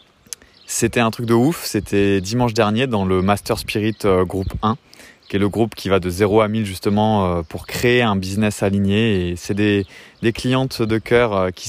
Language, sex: French, male